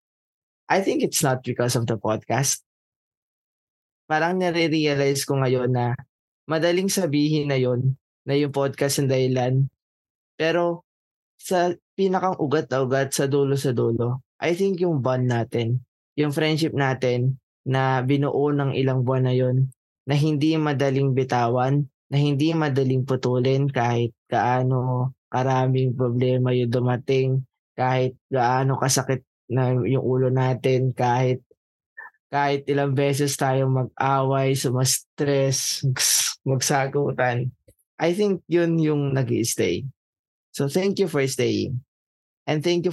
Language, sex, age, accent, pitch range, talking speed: Filipino, male, 20-39, native, 130-150 Hz, 125 wpm